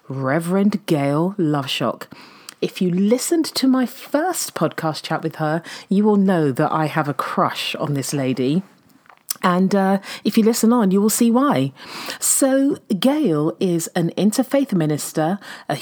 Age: 40-59